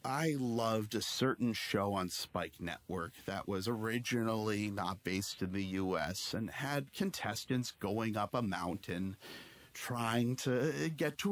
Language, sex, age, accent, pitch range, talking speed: English, male, 40-59, American, 105-150 Hz, 145 wpm